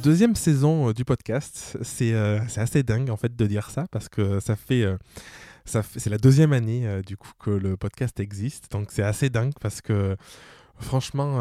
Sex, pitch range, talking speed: male, 105-130 Hz, 195 wpm